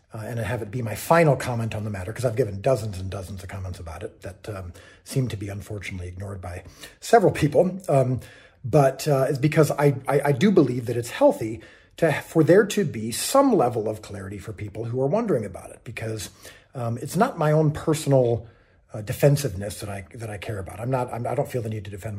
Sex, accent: male, American